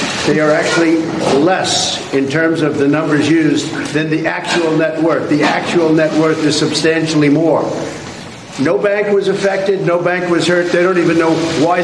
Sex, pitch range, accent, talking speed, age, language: male, 155-180 Hz, American, 175 wpm, 50-69, English